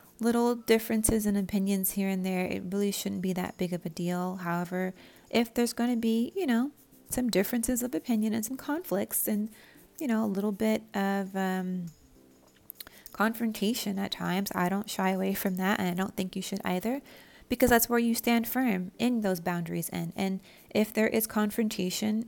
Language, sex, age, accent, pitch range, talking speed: English, female, 30-49, American, 180-205 Hz, 190 wpm